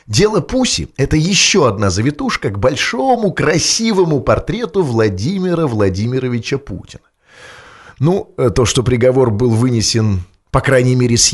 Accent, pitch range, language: native, 110-165 Hz, Russian